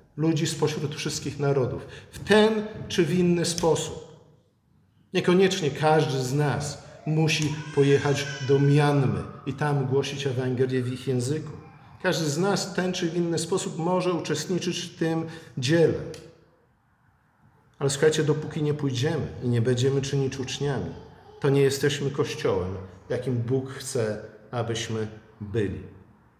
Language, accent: Polish, native